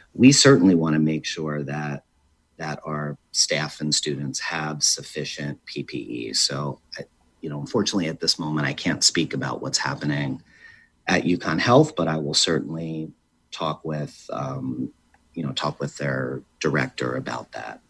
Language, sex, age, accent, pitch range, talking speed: English, male, 40-59, American, 75-90 Hz, 160 wpm